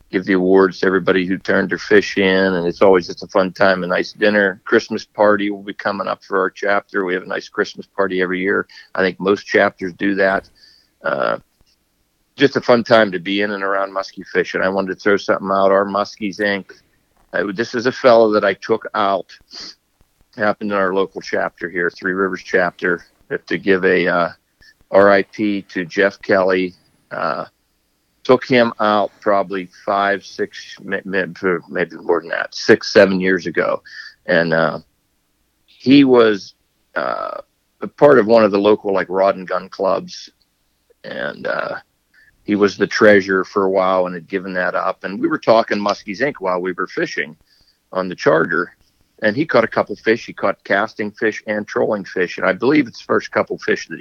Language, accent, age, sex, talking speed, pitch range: English, American, 50-69, male, 190 wpm, 95-105 Hz